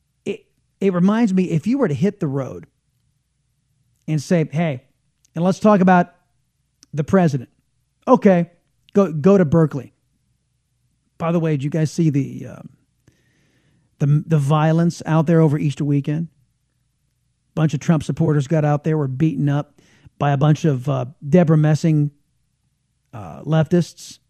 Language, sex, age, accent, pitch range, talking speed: English, male, 40-59, American, 135-175 Hz, 150 wpm